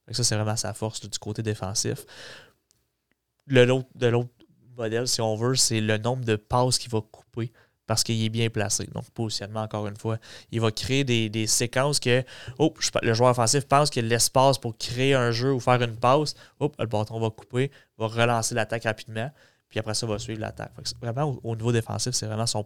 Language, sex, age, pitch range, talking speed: French, male, 20-39, 110-130 Hz, 210 wpm